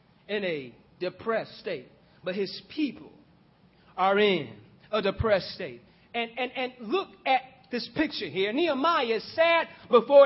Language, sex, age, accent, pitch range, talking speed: English, male, 40-59, American, 195-265 Hz, 140 wpm